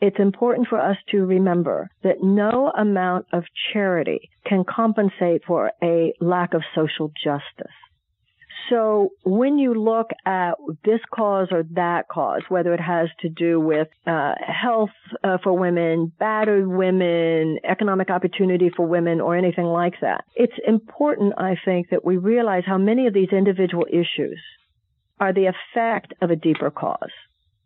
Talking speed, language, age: 150 wpm, English, 50-69